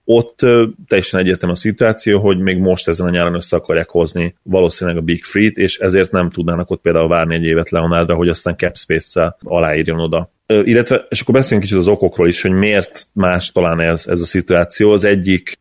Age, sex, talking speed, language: 30-49, male, 205 wpm, Hungarian